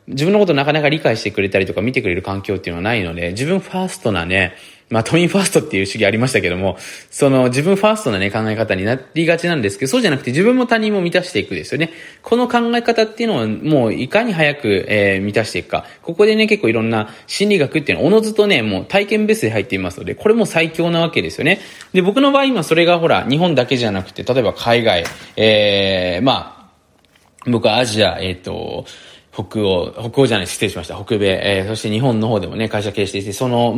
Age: 20-39